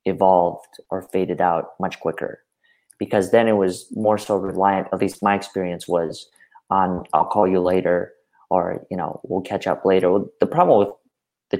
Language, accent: English, American